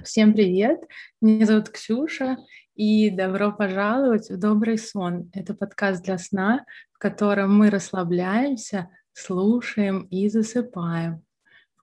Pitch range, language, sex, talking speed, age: 185-215 Hz, Russian, female, 115 wpm, 20-39